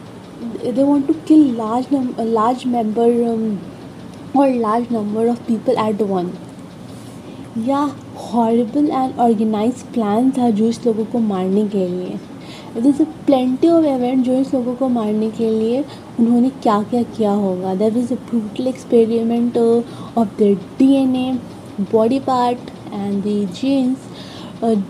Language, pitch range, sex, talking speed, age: Hindi, 225-265 Hz, female, 135 wpm, 20-39